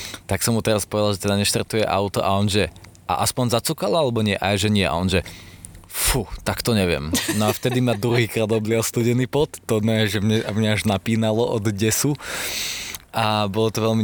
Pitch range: 105-130 Hz